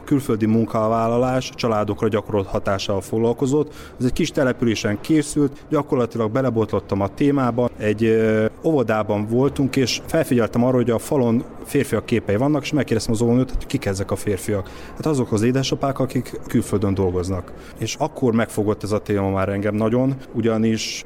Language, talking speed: Hungarian, 160 wpm